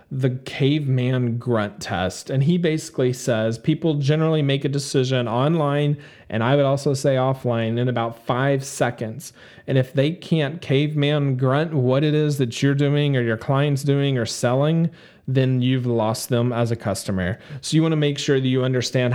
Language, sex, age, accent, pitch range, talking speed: English, male, 40-59, American, 120-145 Hz, 180 wpm